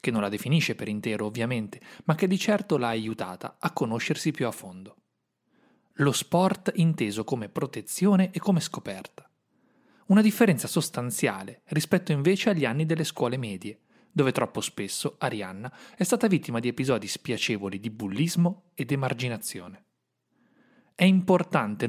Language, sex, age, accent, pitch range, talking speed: Italian, male, 30-49, native, 115-180 Hz, 145 wpm